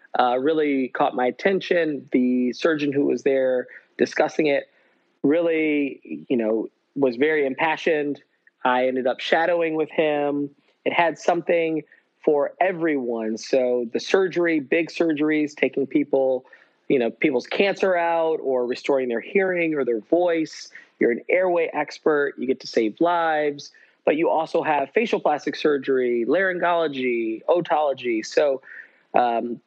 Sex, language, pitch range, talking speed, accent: male, English, 130-165 Hz, 140 wpm, American